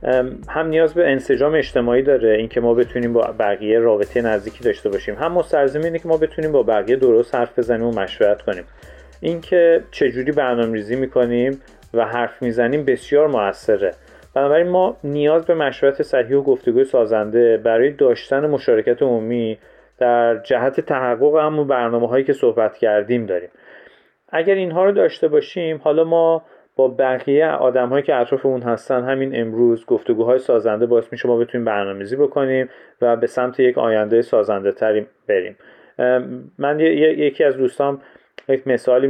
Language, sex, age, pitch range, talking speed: Persian, male, 40-59, 120-155 Hz, 150 wpm